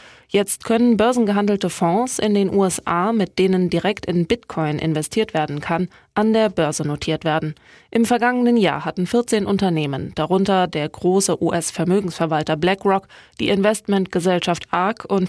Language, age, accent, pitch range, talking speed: German, 20-39, German, 165-210 Hz, 135 wpm